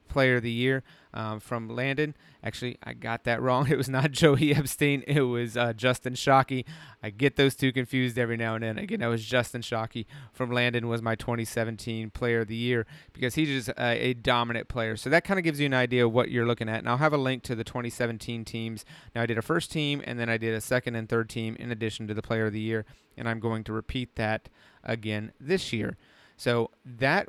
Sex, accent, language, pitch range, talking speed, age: male, American, English, 115-130 Hz, 240 wpm, 30-49